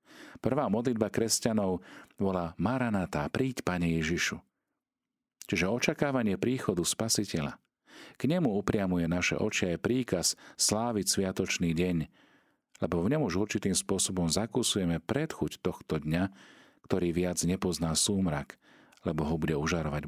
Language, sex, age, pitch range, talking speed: Slovak, male, 40-59, 80-95 Hz, 115 wpm